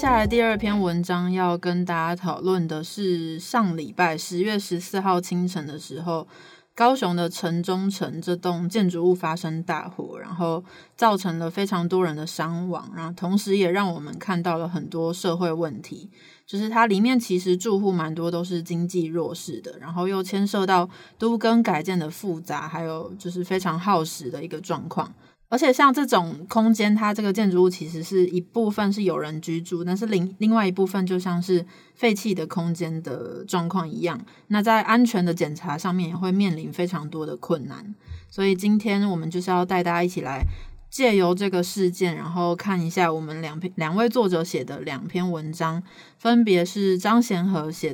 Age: 30-49